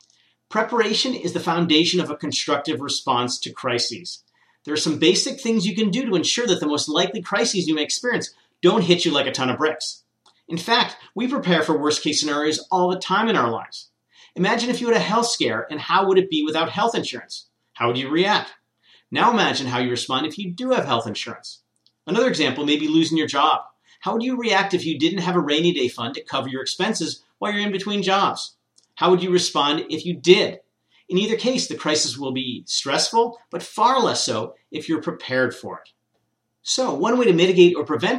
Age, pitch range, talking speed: 40-59, 145-190 Hz, 220 wpm